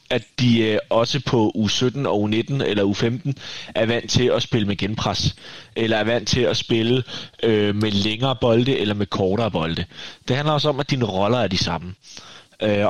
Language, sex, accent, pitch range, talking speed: Danish, male, native, 105-135 Hz, 210 wpm